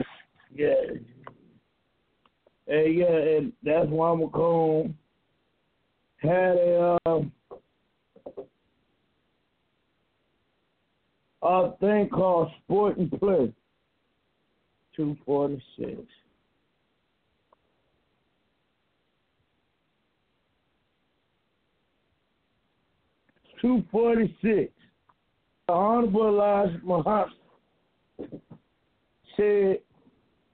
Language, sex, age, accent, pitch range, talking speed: English, male, 60-79, American, 170-205 Hz, 55 wpm